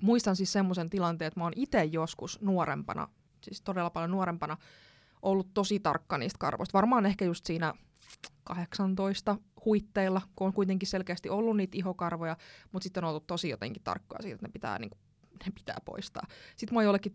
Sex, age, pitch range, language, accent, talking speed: female, 20-39, 170-215 Hz, Finnish, native, 180 wpm